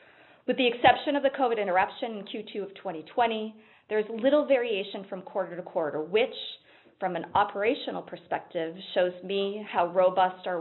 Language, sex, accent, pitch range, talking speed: English, female, American, 195-245 Hz, 160 wpm